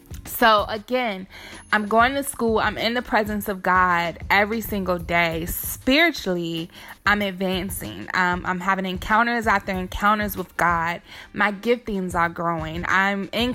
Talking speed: 140 wpm